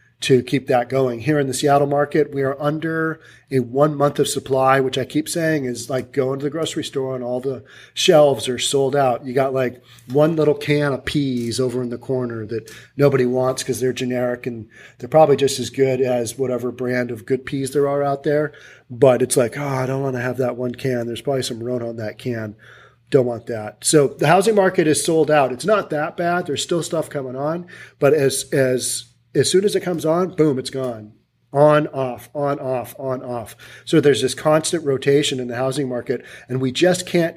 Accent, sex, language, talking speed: American, male, English, 220 wpm